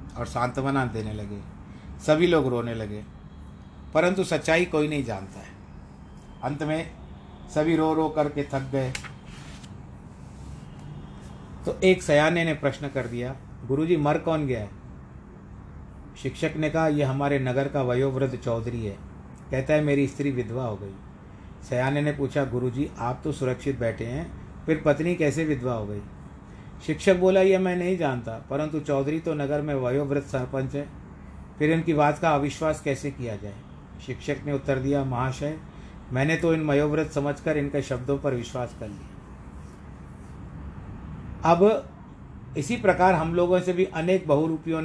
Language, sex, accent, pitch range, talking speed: Hindi, male, native, 115-150 Hz, 150 wpm